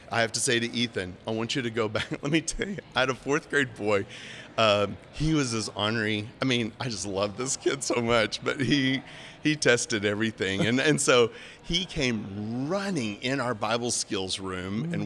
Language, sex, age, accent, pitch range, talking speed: English, male, 50-69, American, 110-135 Hz, 210 wpm